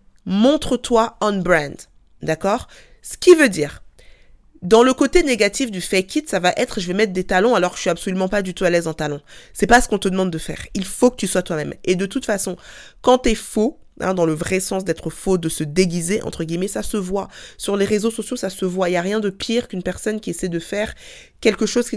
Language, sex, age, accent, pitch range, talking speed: French, female, 20-39, French, 175-225 Hz, 270 wpm